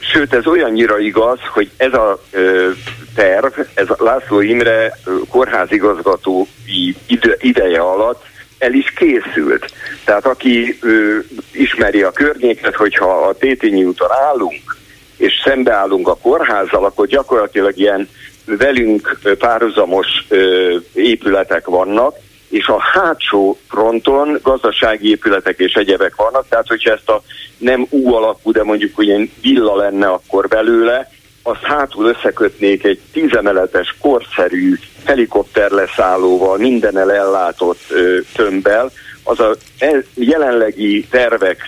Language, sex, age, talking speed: Hungarian, male, 50-69, 115 wpm